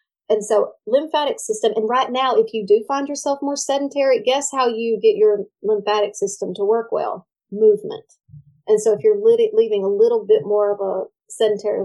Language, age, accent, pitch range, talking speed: English, 30-49, American, 205-335 Hz, 185 wpm